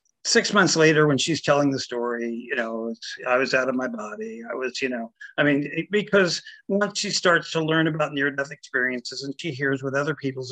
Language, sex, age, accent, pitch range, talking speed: English, male, 50-69, American, 120-170 Hz, 210 wpm